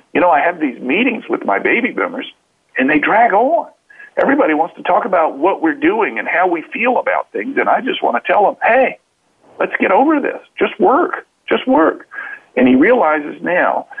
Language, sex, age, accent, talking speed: English, male, 50-69, American, 205 wpm